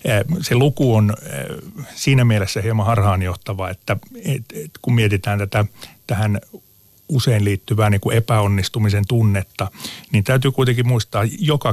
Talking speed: 120 wpm